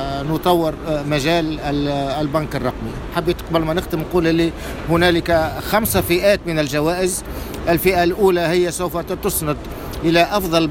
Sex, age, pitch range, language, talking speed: male, 50-69, 155-185 Hz, Arabic, 120 wpm